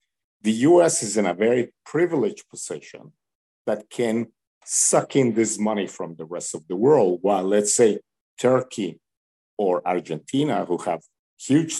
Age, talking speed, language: 50-69, 145 wpm, English